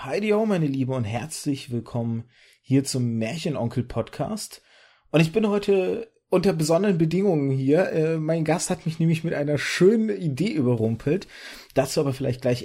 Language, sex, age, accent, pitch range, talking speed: German, male, 30-49, German, 120-160 Hz, 155 wpm